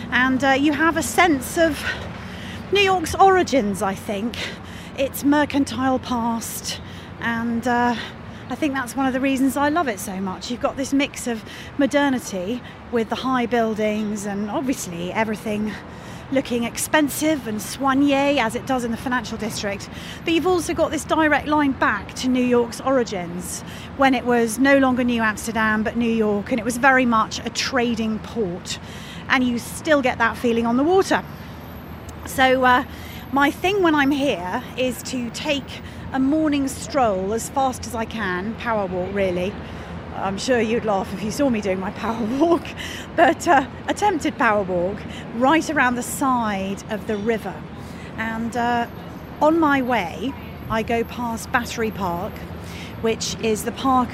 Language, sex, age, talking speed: English, female, 30-49, 165 wpm